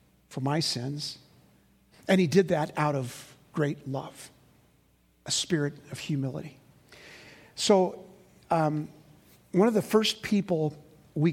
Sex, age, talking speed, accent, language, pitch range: male, 50-69, 120 wpm, American, English, 145-170 Hz